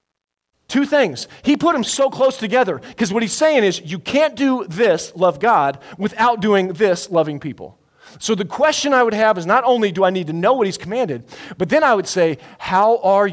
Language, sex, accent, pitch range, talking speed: English, male, American, 140-225 Hz, 215 wpm